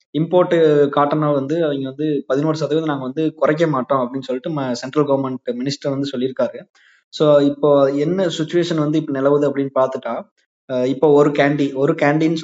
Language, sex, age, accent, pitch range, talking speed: Tamil, male, 20-39, native, 135-155 Hz, 160 wpm